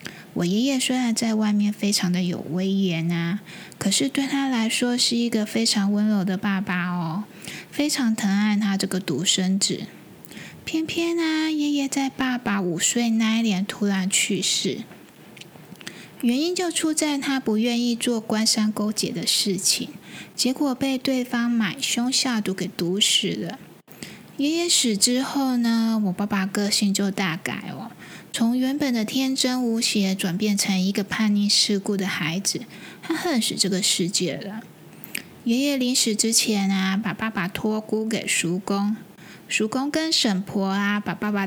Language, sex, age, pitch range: Chinese, female, 20-39, 195-240 Hz